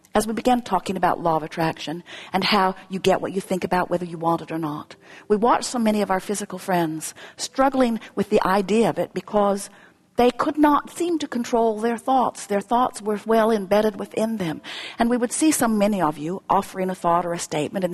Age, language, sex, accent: 50-69, English, female, American